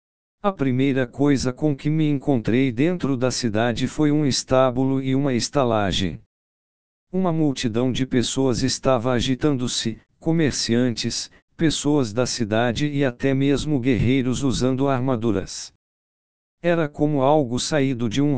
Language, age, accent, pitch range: Portuguese, 60-79, Brazilian, 120-145 Hz